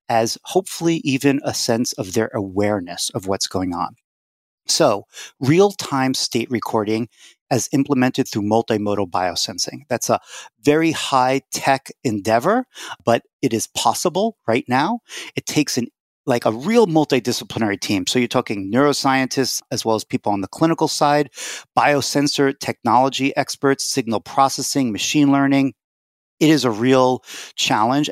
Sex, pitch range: male, 110-140 Hz